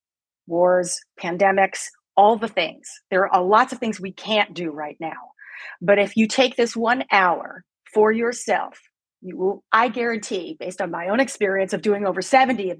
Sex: female